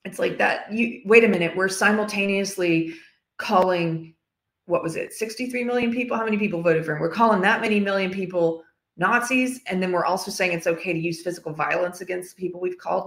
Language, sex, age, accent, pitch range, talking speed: English, female, 30-49, American, 160-190 Hz, 200 wpm